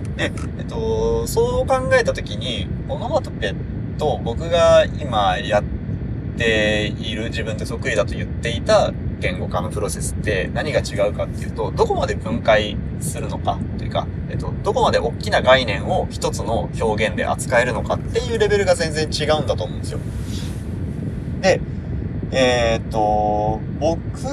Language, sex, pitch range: Japanese, male, 85-130 Hz